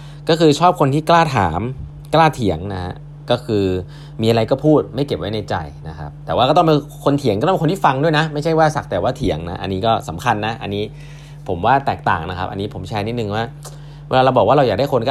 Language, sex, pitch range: Thai, male, 105-145 Hz